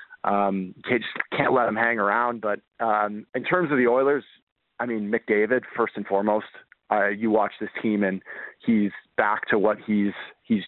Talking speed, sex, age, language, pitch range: 180 wpm, male, 30-49, English, 105-115 Hz